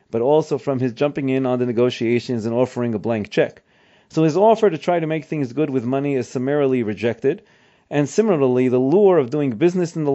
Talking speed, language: 220 wpm, English